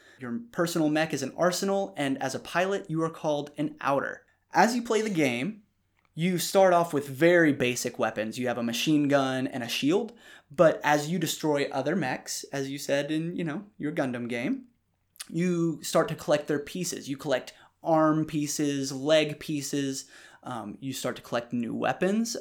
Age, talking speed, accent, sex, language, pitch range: 20-39, 185 wpm, American, male, English, 130-180 Hz